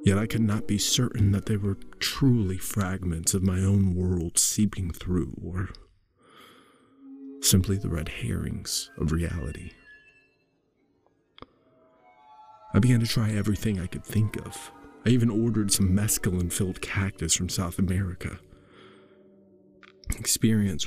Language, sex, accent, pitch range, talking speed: English, male, American, 90-115 Hz, 125 wpm